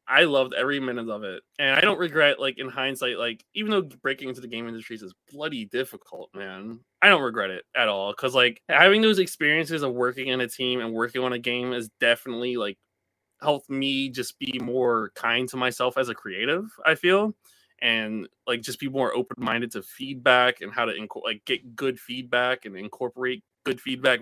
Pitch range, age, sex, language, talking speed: 125-175 Hz, 20-39, male, English, 205 wpm